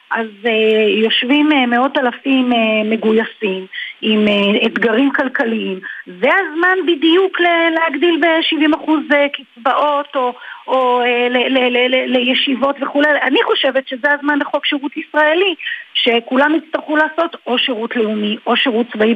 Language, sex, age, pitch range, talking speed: Hebrew, female, 40-59, 215-290 Hz, 140 wpm